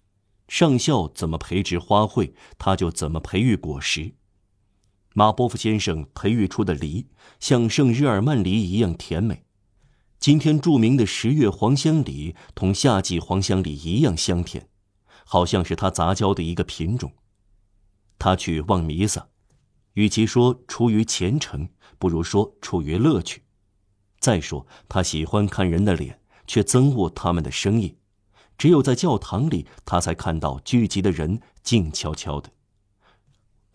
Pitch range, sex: 90-115 Hz, male